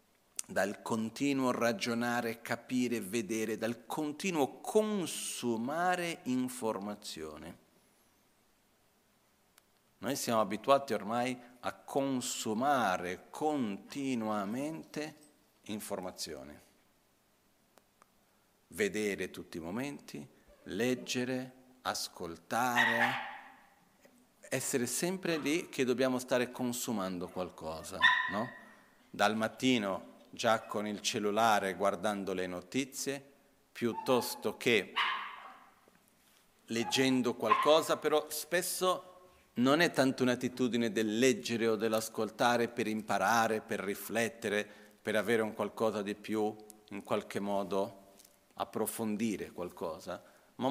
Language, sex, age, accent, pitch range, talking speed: Italian, male, 50-69, native, 105-135 Hz, 85 wpm